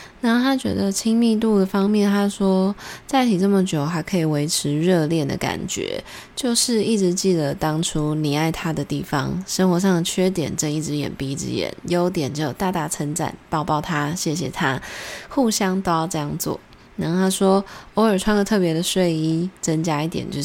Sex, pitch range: female, 155-190 Hz